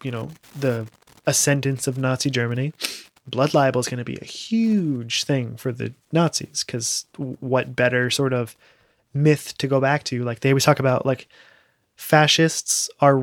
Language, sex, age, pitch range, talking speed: English, male, 20-39, 125-145 Hz, 170 wpm